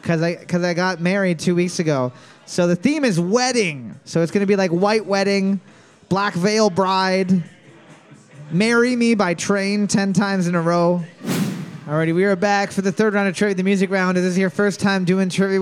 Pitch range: 175-220 Hz